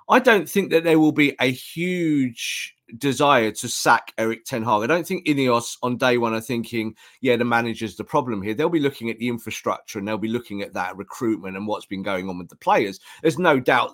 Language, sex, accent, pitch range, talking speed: English, male, British, 115-160 Hz, 235 wpm